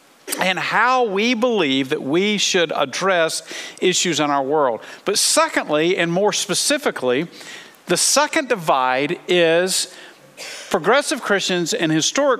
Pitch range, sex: 165-245 Hz, male